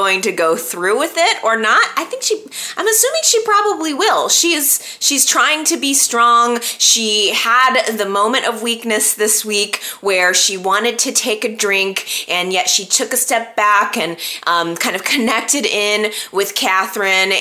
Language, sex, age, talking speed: English, female, 20-39, 185 wpm